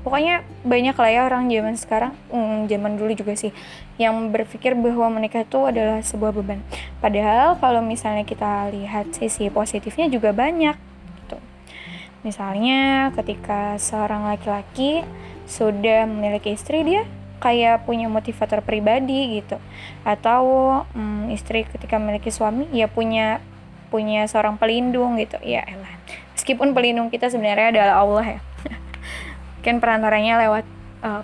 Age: 10-29